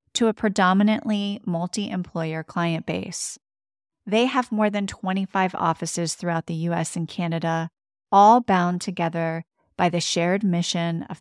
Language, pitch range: English, 170-205 Hz